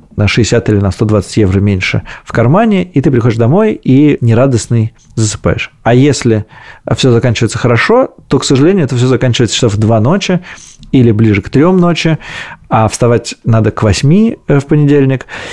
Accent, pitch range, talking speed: native, 115-140 Hz, 165 wpm